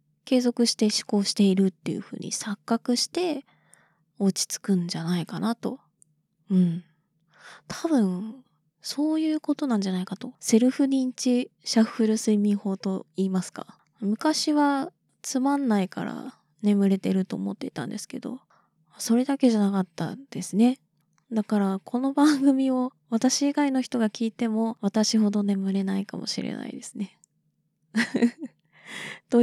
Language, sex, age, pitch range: Japanese, female, 20-39, 185-250 Hz